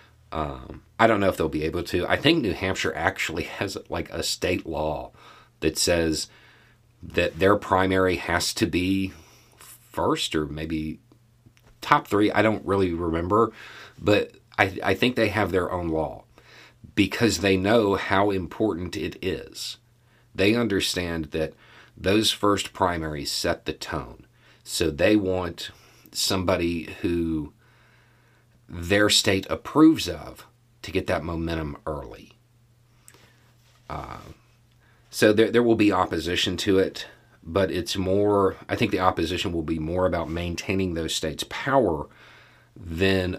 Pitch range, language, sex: 85-115 Hz, English, male